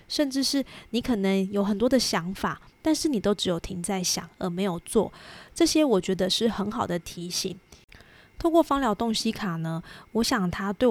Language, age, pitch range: Chinese, 20-39, 185-235 Hz